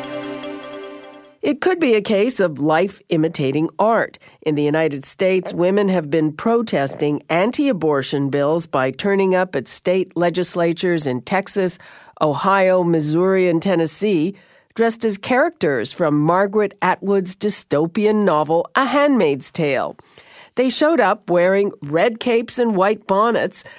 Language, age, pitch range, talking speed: English, 50-69, 155-215 Hz, 125 wpm